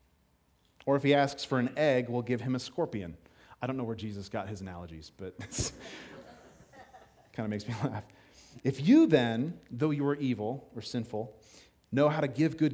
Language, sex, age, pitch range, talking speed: English, male, 30-49, 115-150 Hz, 195 wpm